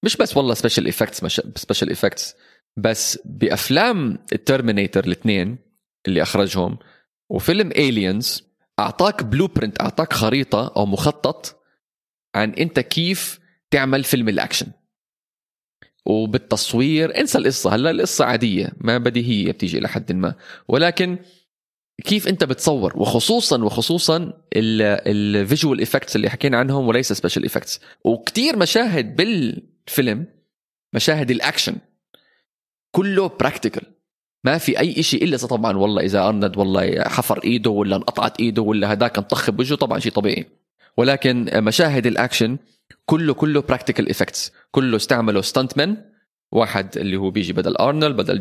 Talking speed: 125 wpm